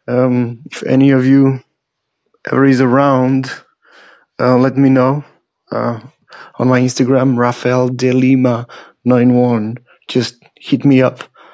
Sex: male